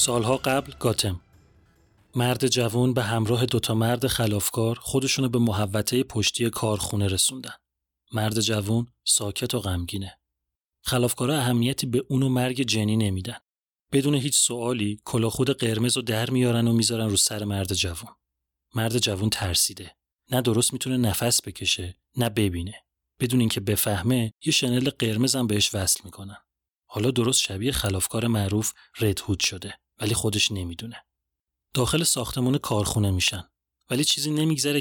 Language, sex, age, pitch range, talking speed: Persian, male, 30-49, 100-125 Hz, 135 wpm